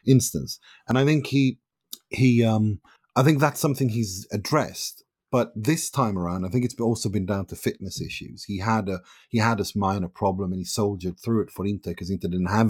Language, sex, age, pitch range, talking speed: English, male, 30-49, 90-115 Hz, 210 wpm